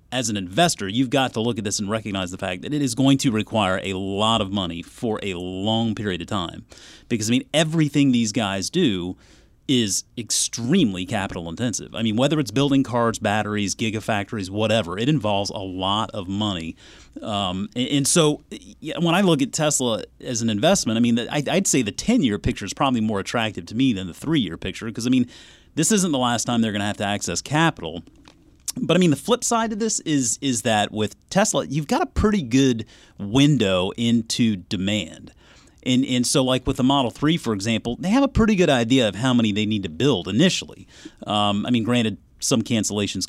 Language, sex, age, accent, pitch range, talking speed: English, male, 30-49, American, 100-135 Hz, 210 wpm